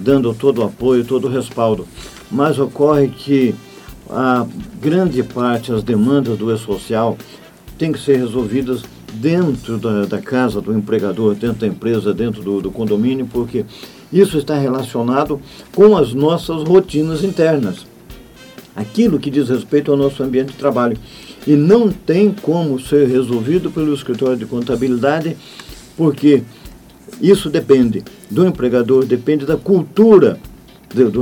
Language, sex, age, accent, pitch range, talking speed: Portuguese, male, 50-69, Brazilian, 120-150 Hz, 140 wpm